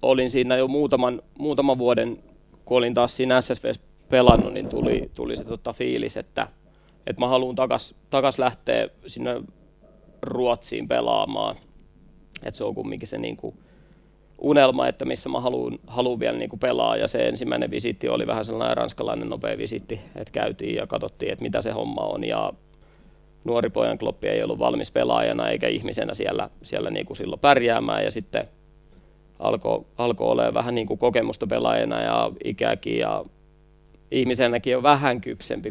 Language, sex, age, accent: Finnish, male, 30-49, native